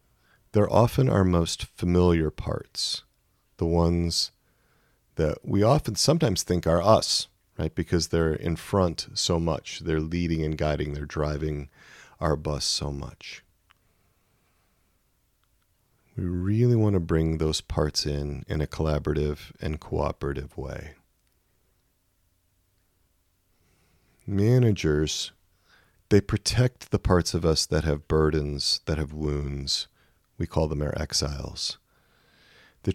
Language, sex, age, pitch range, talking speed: English, male, 40-59, 80-95 Hz, 120 wpm